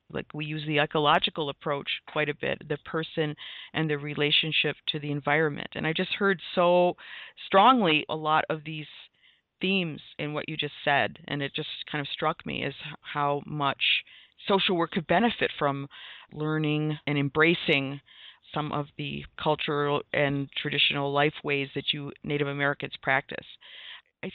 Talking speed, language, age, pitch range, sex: 160 wpm, English, 40-59, 145-165 Hz, female